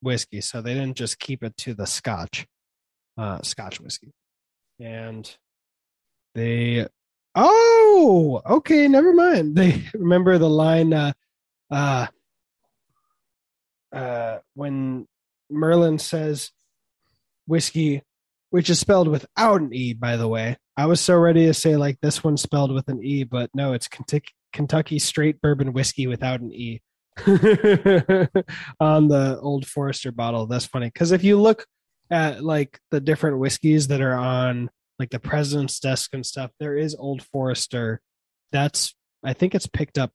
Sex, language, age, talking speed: male, English, 20-39, 145 wpm